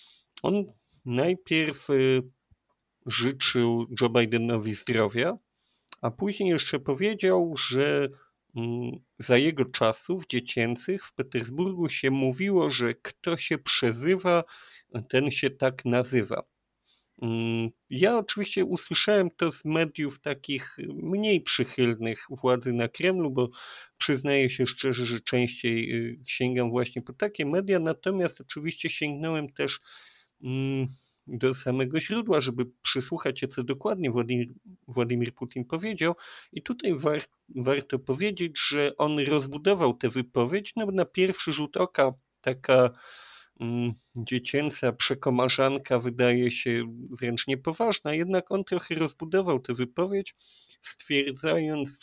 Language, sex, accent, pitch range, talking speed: Polish, male, native, 125-165 Hz, 110 wpm